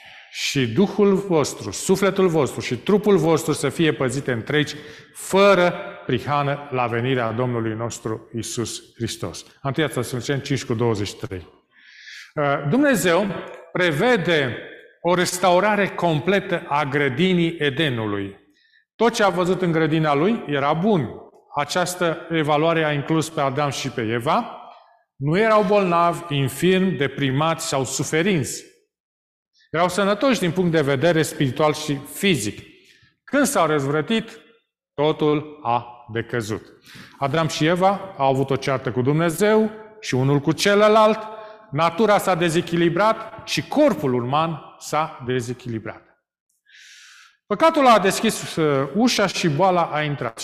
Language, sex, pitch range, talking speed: Romanian, male, 135-190 Hz, 120 wpm